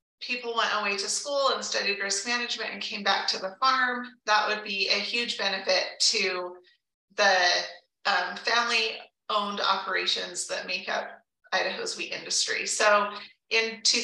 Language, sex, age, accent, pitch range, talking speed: English, female, 30-49, American, 195-240 Hz, 150 wpm